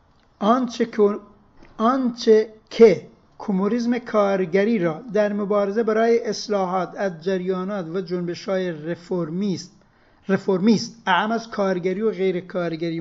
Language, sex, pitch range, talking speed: Persian, male, 170-200 Hz, 100 wpm